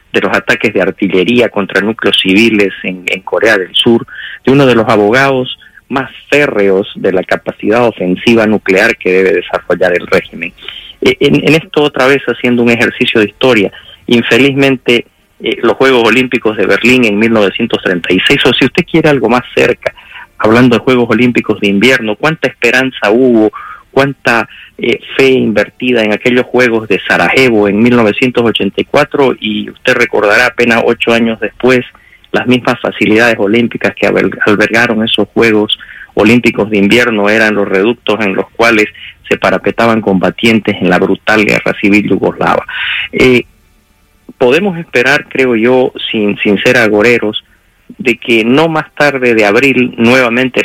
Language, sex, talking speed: English, male, 150 wpm